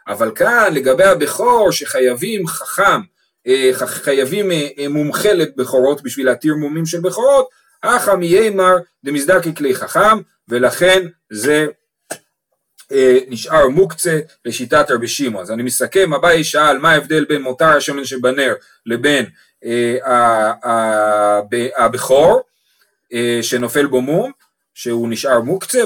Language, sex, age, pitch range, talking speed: Hebrew, male, 40-59, 130-190 Hz, 105 wpm